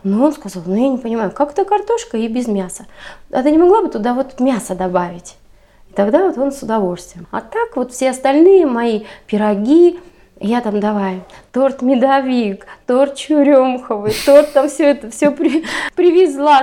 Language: Russian